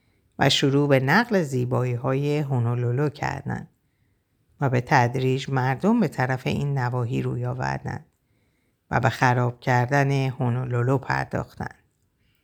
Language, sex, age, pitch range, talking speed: Persian, female, 50-69, 130-155 Hz, 115 wpm